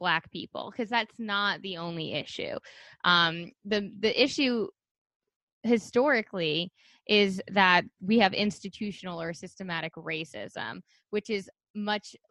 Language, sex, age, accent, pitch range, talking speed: English, female, 10-29, American, 180-225 Hz, 115 wpm